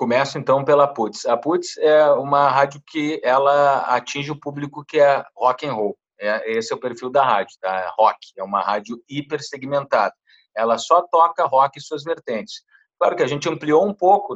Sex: male